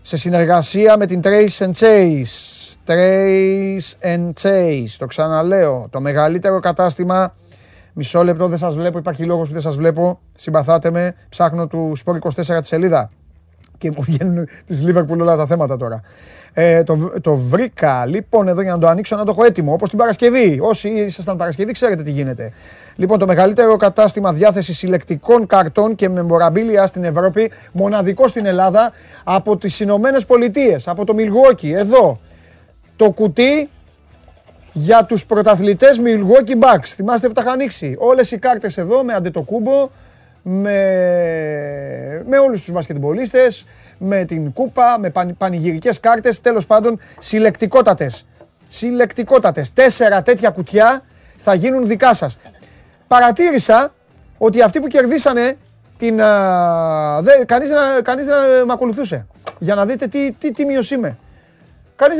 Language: Greek